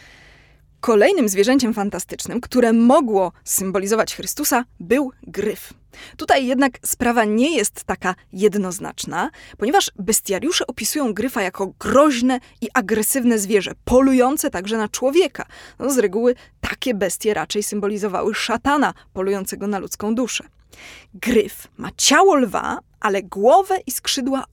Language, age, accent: Polish, 20-39, native